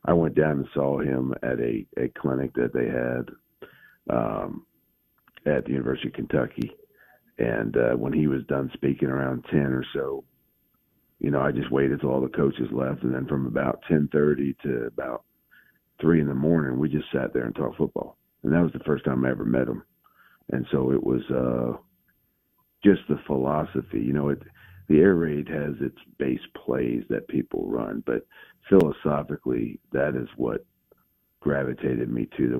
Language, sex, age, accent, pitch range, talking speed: English, male, 50-69, American, 65-75 Hz, 180 wpm